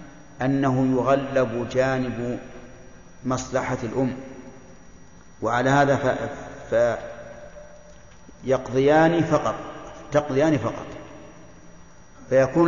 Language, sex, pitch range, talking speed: Arabic, male, 130-150 Hz, 65 wpm